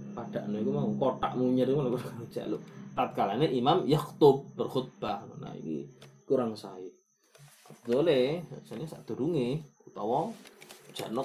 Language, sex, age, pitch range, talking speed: Malay, male, 20-39, 115-150 Hz, 105 wpm